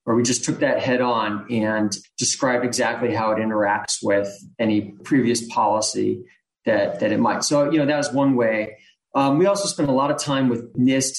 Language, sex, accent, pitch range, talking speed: English, male, American, 120-150 Hz, 205 wpm